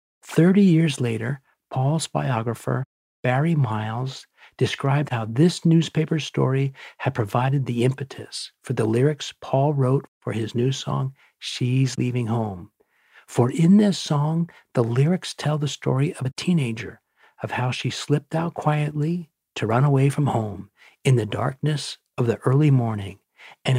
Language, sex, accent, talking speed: English, male, American, 150 wpm